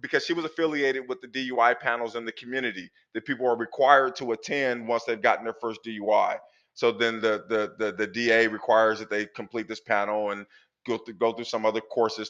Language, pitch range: English, 115-140 Hz